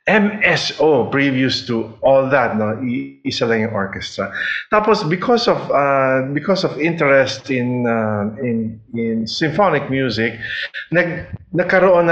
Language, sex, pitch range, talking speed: English, male, 115-150 Hz, 115 wpm